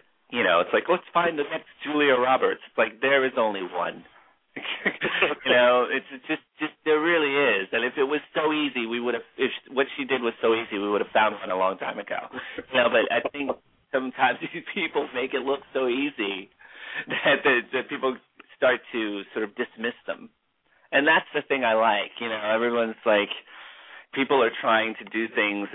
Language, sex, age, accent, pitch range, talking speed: English, male, 30-49, American, 115-170 Hz, 205 wpm